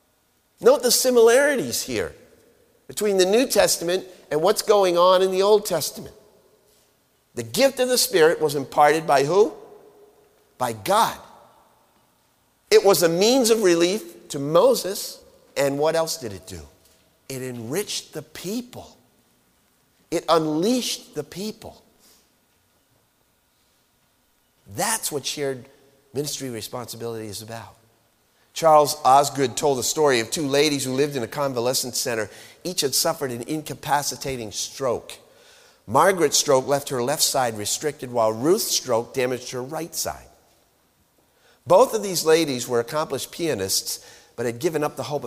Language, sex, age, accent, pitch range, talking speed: English, male, 50-69, American, 120-195 Hz, 135 wpm